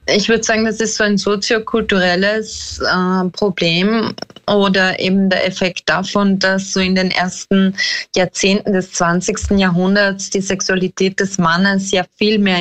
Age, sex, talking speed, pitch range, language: 20-39, female, 150 wpm, 185-215 Hz, German